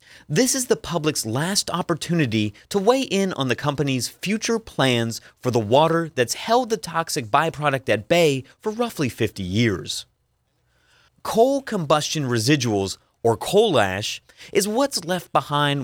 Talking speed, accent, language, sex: 145 wpm, American, English, male